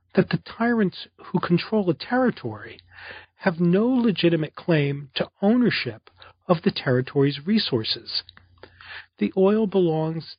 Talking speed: 115 wpm